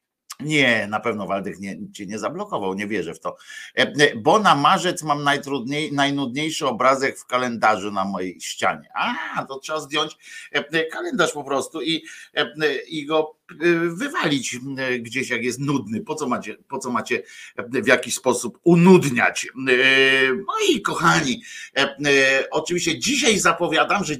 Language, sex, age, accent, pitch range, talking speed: Polish, male, 50-69, native, 120-155 Hz, 125 wpm